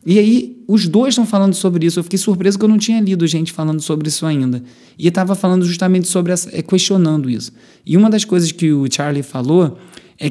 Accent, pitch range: Brazilian, 145-195 Hz